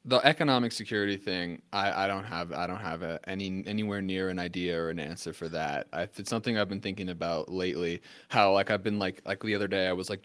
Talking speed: 245 wpm